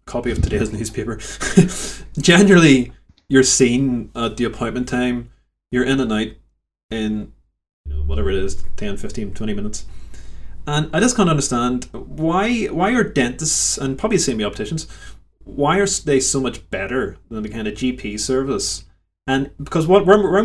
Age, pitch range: 20-39, 105-135 Hz